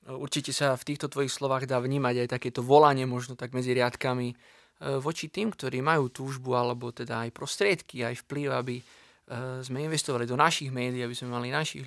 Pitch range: 125-140 Hz